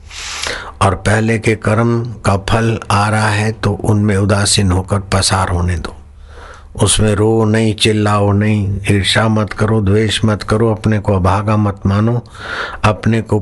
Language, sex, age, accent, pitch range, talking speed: Hindi, male, 60-79, native, 95-110 Hz, 150 wpm